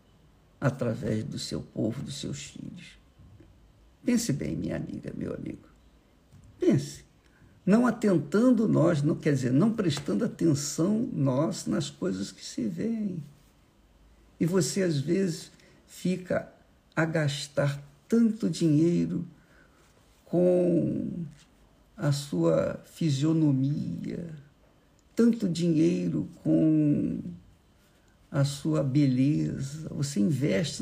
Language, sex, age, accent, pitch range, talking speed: Portuguese, male, 60-79, Brazilian, 140-170 Hz, 95 wpm